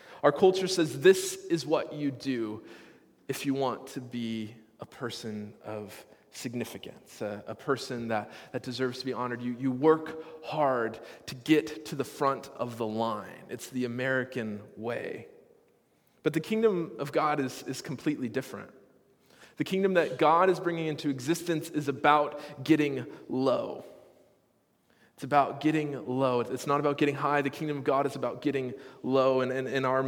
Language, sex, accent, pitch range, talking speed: English, male, American, 130-165 Hz, 170 wpm